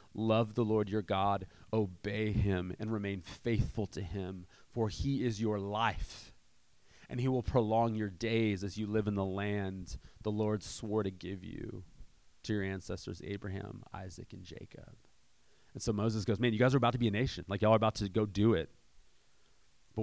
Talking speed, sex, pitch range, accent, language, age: 190 wpm, male, 100-120 Hz, American, English, 30-49